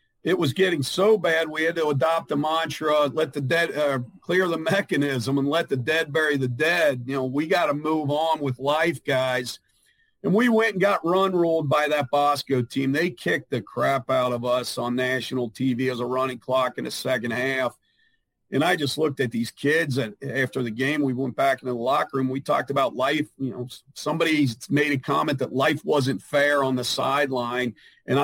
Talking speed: 205 wpm